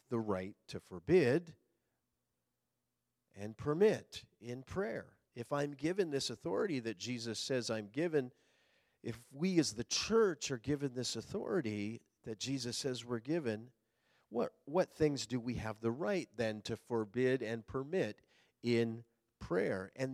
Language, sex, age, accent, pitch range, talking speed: English, male, 50-69, American, 115-155 Hz, 145 wpm